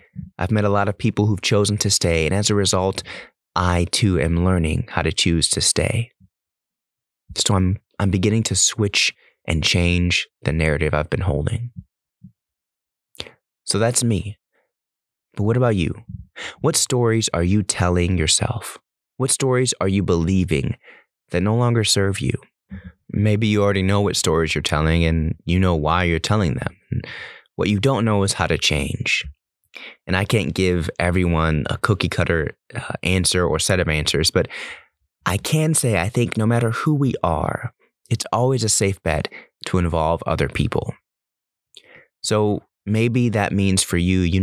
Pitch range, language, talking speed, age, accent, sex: 85-105 Hz, English, 165 wpm, 30-49, American, male